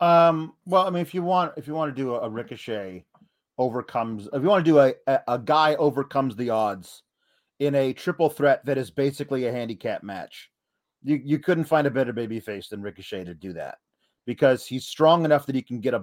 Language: English